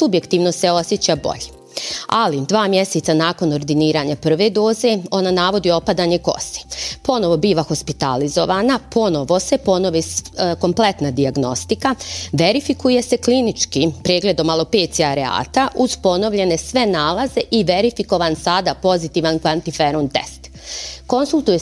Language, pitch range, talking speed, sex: Croatian, 150-200 Hz, 110 wpm, female